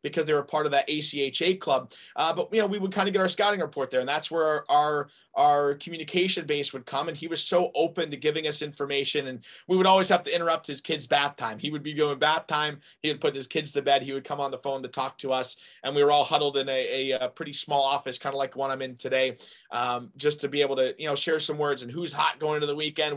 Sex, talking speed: male, 285 wpm